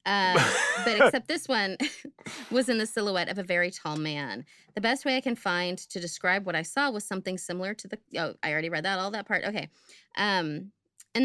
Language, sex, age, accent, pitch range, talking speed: English, female, 30-49, American, 175-235 Hz, 220 wpm